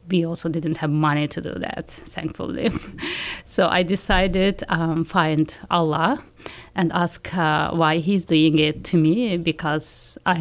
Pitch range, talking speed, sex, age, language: 165-185 Hz, 150 wpm, female, 30-49, English